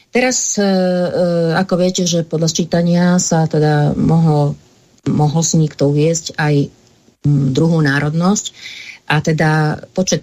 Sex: female